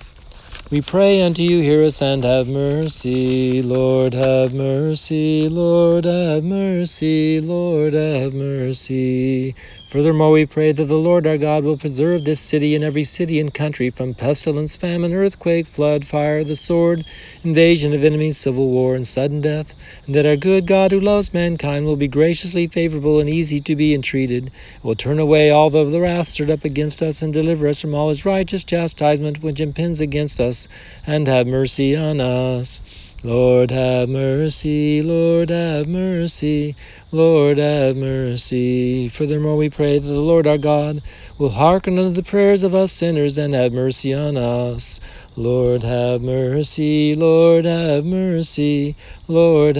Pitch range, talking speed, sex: 130-160 Hz, 160 wpm, male